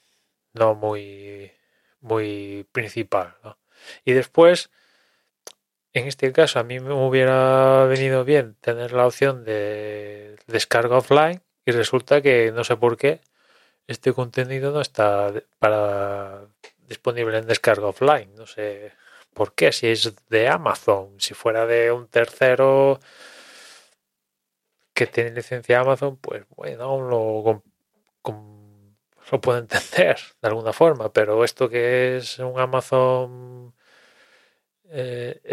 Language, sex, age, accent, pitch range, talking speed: Spanish, male, 20-39, Spanish, 110-130 Hz, 125 wpm